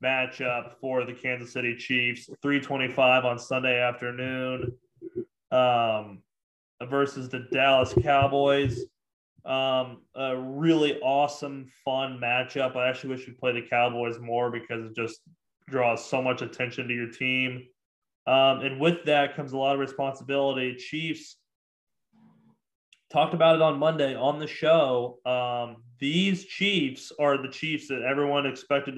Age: 20-39